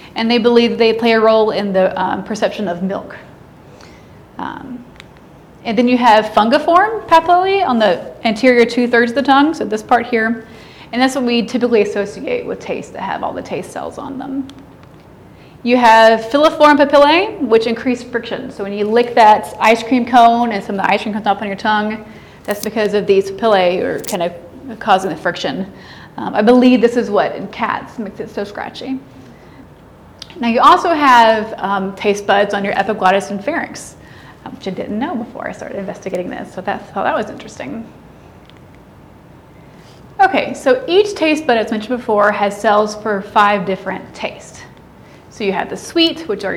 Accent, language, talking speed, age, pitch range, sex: American, English, 185 wpm, 30-49, 210-250 Hz, female